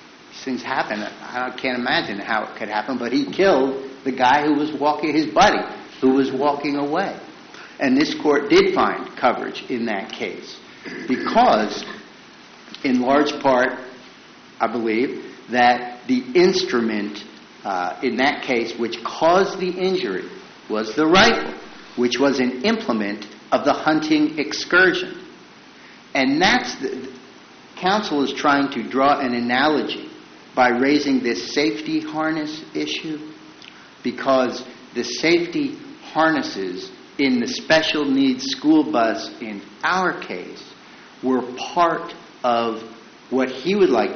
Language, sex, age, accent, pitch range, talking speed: English, male, 50-69, American, 120-170 Hz, 130 wpm